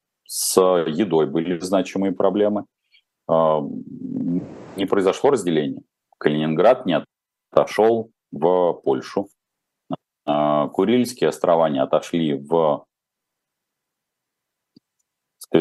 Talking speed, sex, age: 75 wpm, male, 40-59